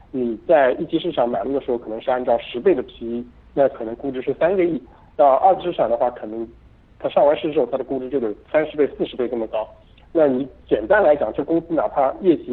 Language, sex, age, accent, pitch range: Chinese, male, 50-69, native, 120-155 Hz